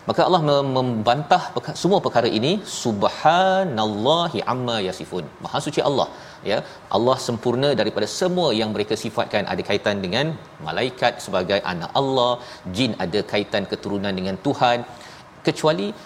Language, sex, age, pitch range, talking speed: Malayalam, male, 40-59, 110-135 Hz, 125 wpm